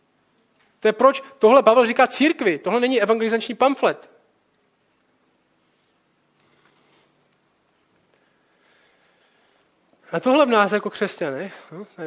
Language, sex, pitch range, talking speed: Czech, male, 155-215 Hz, 90 wpm